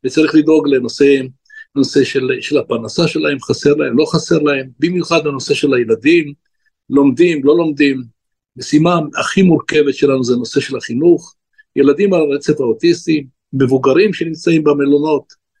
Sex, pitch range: male, 140-170 Hz